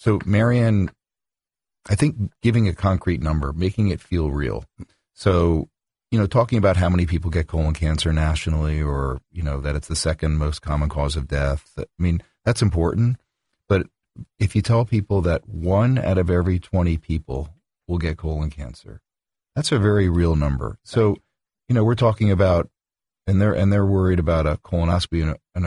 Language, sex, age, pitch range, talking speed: English, male, 40-59, 80-105 Hz, 180 wpm